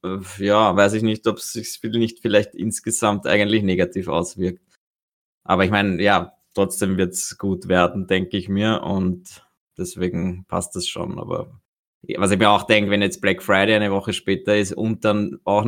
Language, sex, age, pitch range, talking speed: German, male, 20-39, 95-105 Hz, 180 wpm